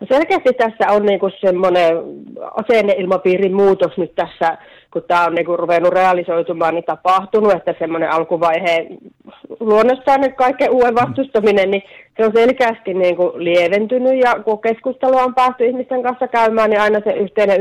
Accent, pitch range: native, 180-215 Hz